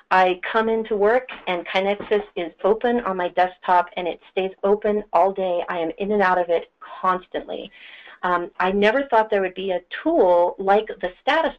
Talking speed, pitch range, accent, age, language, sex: 190 wpm, 175-205 Hz, American, 40-59, English, female